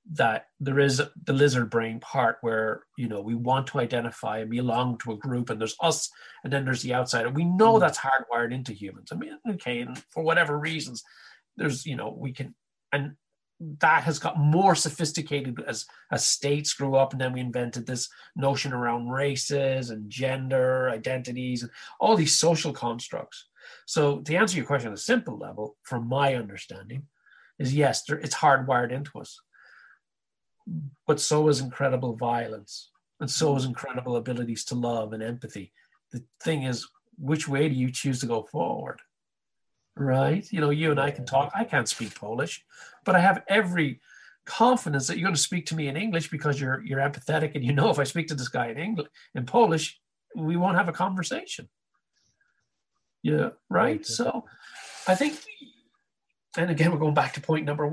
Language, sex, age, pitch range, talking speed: English, male, 30-49, 125-160 Hz, 180 wpm